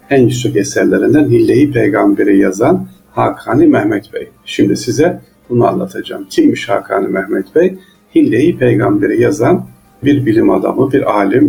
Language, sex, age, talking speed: Turkish, male, 50-69, 130 wpm